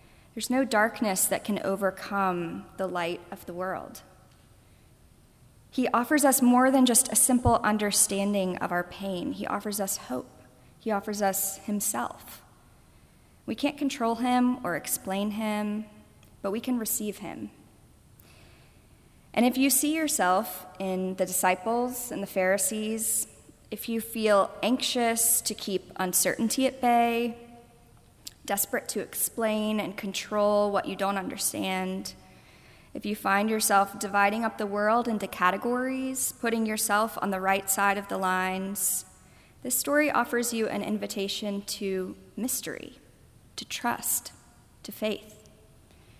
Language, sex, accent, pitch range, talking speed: English, female, American, 195-230 Hz, 135 wpm